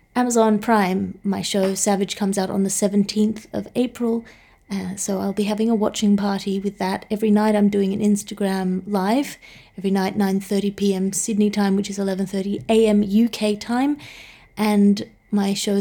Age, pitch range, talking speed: 30-49, 190-210 Hz, 160 wpm